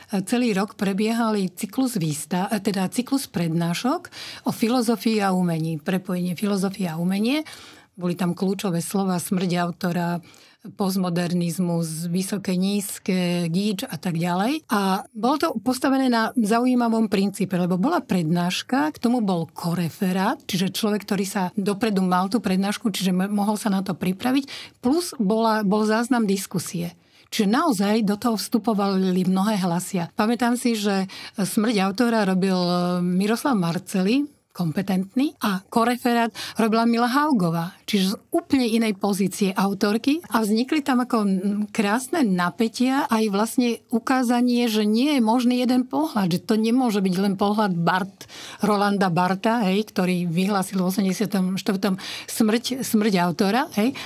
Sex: female